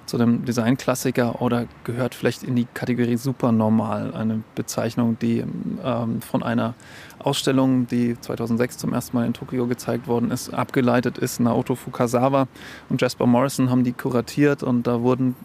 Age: 30-49